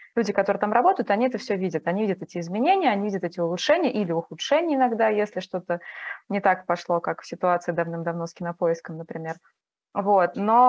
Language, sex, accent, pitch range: Russian, female, native, 185-240 Hz